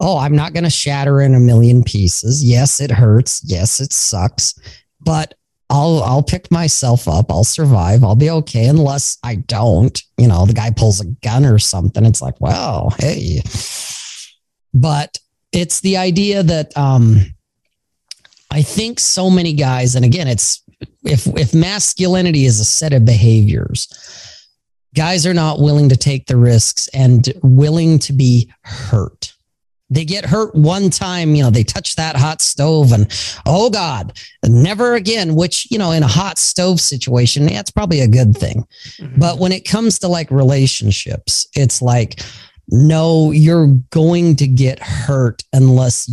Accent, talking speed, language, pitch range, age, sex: American, 165 wpm, English, 115-155 Hz, 40-59, male